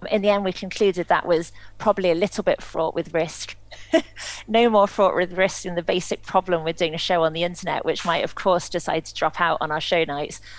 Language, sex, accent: English, female, British